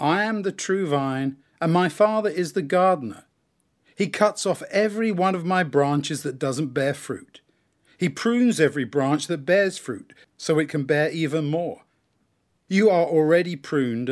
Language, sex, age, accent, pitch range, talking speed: English, male, 50-69, British, 145-185 Hz, 170 wpm